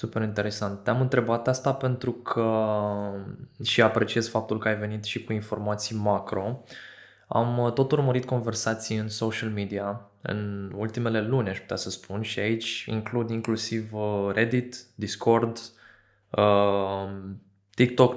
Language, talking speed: Romanian, 120 wpm